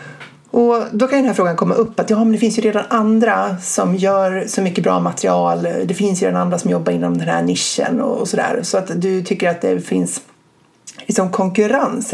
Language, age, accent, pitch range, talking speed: Swedish, 30-49, native, 190-245 Hz, 220 wpm